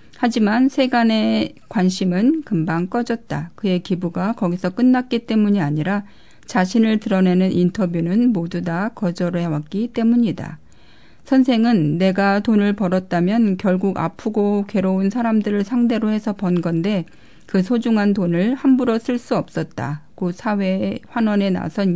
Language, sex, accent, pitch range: Korean, female, native, 175-230 Hz